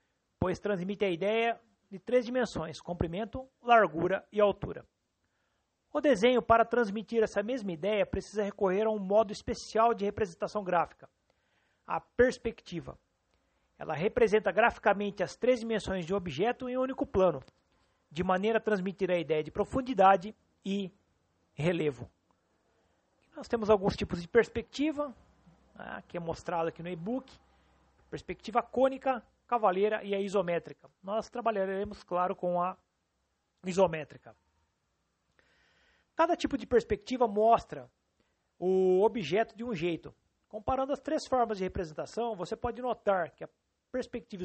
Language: Portuguese